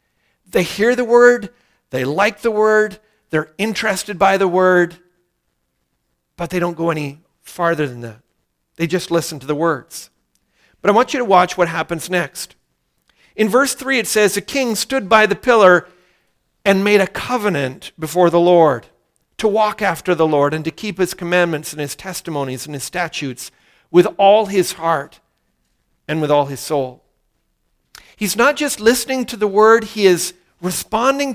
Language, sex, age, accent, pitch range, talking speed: English, male, 50-69, American, 165-230 Hz, 170 wpm